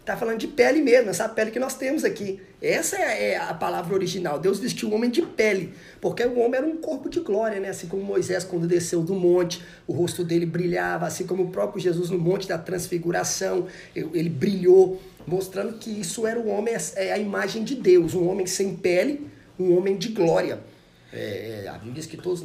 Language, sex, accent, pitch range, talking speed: Portuguese, male, Brazilian, 170-210 Hz, 220 wpm